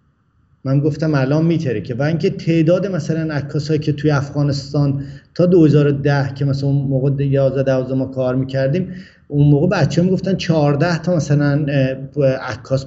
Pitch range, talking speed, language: 125-150 Hz, 155 wpm, Persian